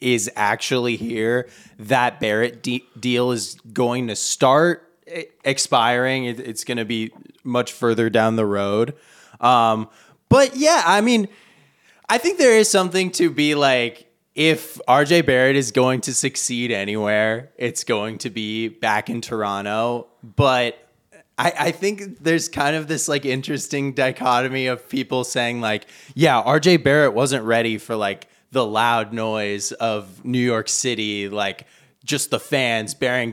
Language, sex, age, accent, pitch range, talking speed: English, male, 20-39, American, 115-150 Hz, 150 wpm